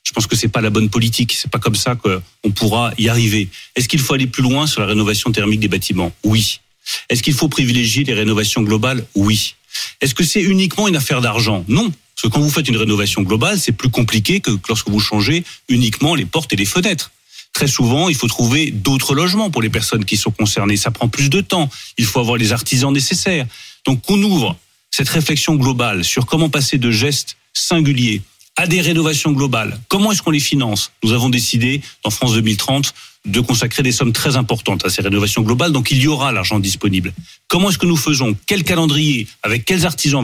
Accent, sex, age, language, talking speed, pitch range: French, male, 40-59, French, 215 wpm, 110-150 Hz